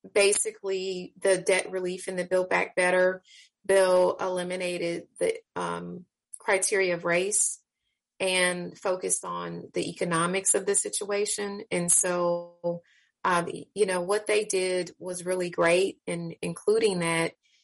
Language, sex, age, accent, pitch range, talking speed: English, female, 30-49, American, 165-185 Hz, 130 wpm